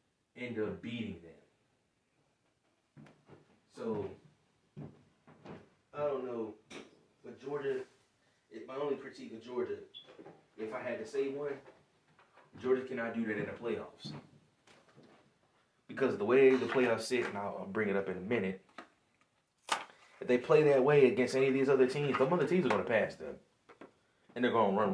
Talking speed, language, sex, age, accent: 165 wpm, English, male, 30-49, American